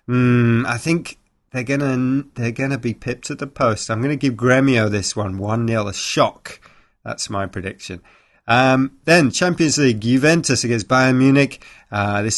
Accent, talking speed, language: British, 180 wpm, English